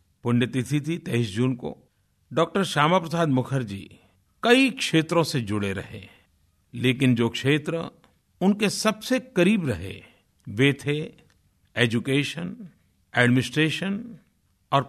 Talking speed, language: 100 wpm, Hindi